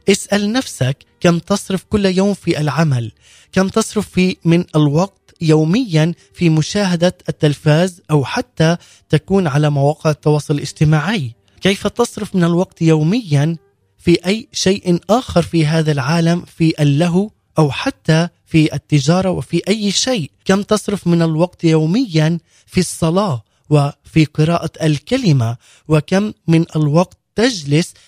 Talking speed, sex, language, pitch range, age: 125 wpm, male, Arabic, 150-185 Hz, 20-39